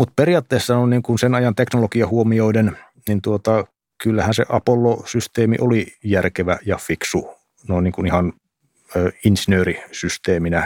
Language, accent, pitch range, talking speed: Finnish, native, 90-110 Hz, 125 wpm